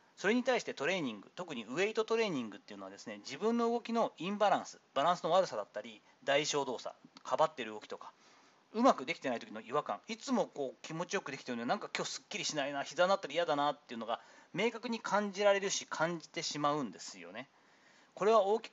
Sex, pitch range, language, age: male, 155-225 Hz, Japanese, 40-59